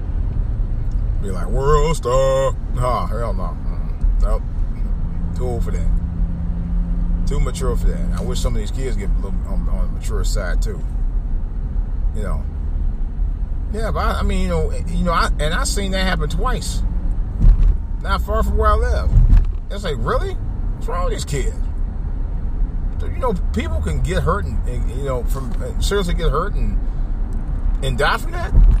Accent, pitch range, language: American, 75-105 Hz, Russian